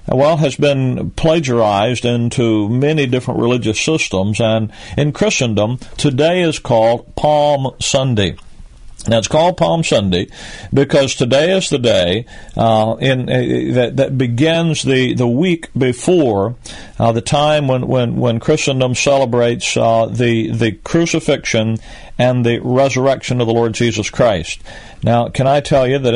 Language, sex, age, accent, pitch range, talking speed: English, male, 40-59, American, 115-135 Hz, 145 wpm